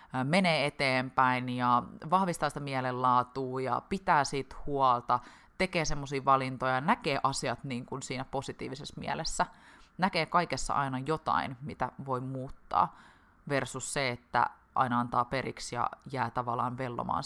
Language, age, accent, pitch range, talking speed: Finnish, 20-39, native, 130-160 Hz, 130 wpm